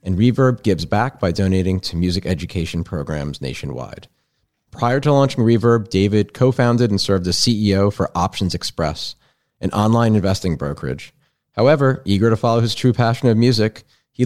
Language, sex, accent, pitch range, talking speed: English, male, American, 95-120 Hz, 160 wpm